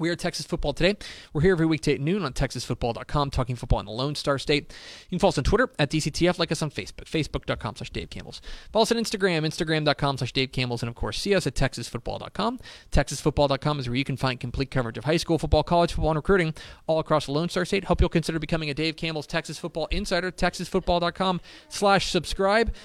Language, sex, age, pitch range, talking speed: English, male, 30-49, 125-175 Hz, 220 wpm